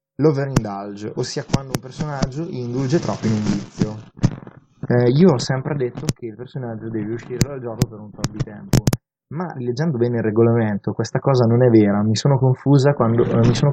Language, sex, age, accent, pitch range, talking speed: Italian, male, 20-39, native, 115-140 Hz, 190 wpm